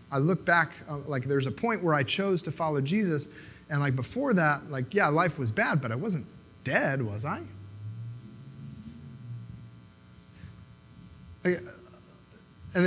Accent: American